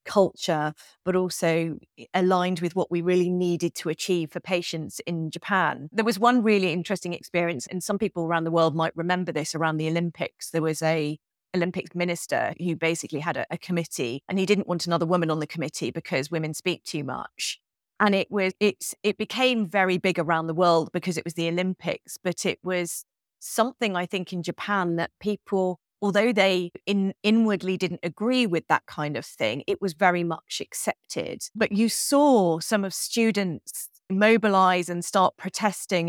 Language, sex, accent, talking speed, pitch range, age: English, female, British, 180 wpm, 165-195 Hz, 30-49